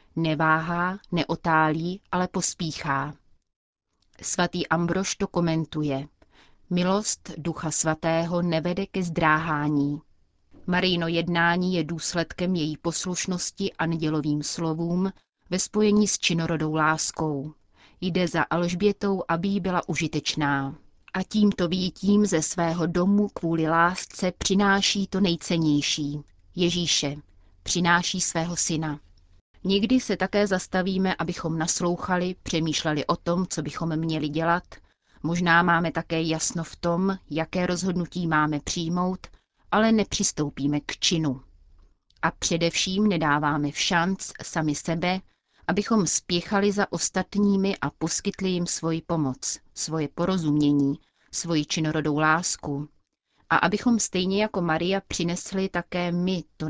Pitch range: 155-185 Hz